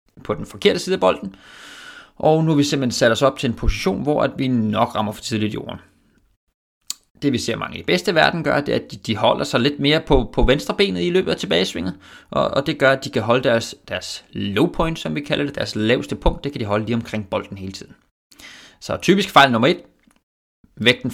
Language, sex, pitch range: Danish, male, 110-145 Hz